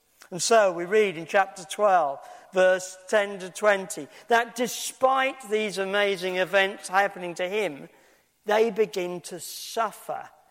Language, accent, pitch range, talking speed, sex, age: English, British, 185-235 Hz, 130 wpm, male, 50-69